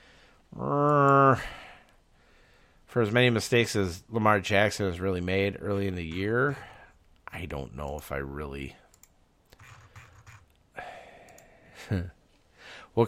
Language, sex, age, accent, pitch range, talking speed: English, male, 40-59, American, 80-105 Hz, 95 wpm